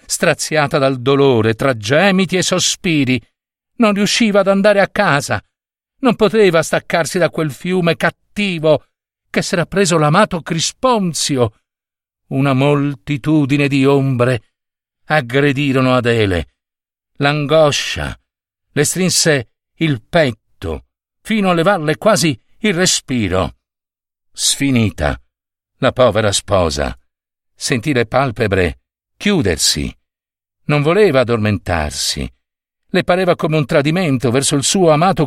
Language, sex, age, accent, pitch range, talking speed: Italian, male, 60-79, native, 100-155 Hz, 105 wpm